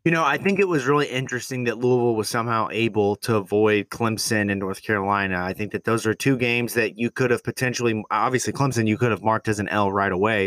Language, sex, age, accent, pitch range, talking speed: English, male, 20-39, American, 105-125 Hz, 240 wpm